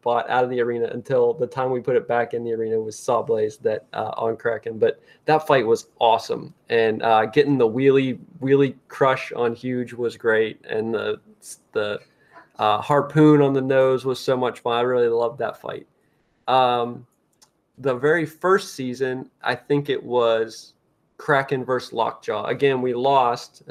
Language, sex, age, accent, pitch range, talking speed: English, male, 20-39, American, 120-155 Hz, 170 wpm